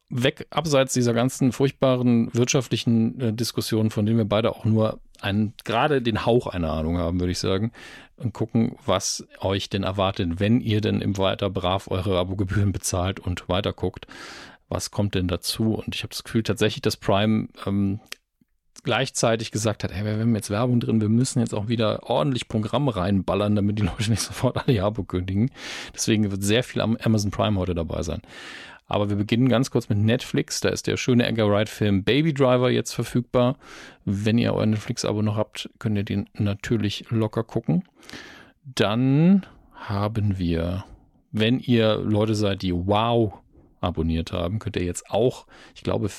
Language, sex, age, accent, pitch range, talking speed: German, male, 40-59, German, 100-120 Hz, 175 wpm